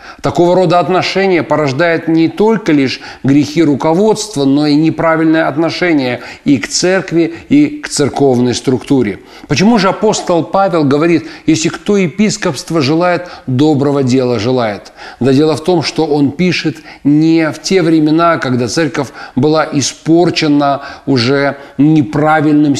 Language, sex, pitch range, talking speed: Russian, male, 140-170 Hz, 130 wpm